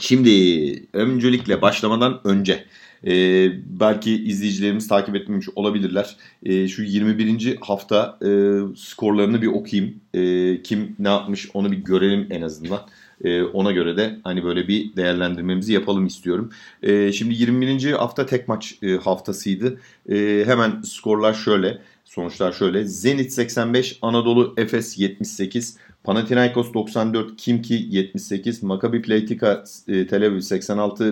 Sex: male